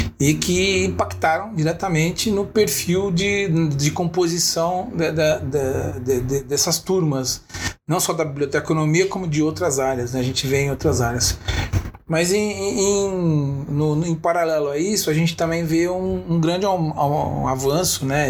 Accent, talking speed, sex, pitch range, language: Brazilian, 135 wpm, male, 125-170 Hz, Portuguese